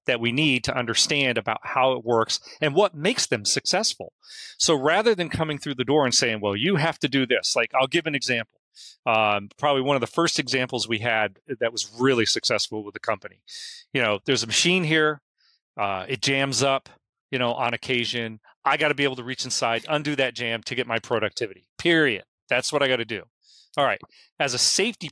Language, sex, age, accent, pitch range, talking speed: English, male, 30-49, American, 125-155 Hz, 215 wpm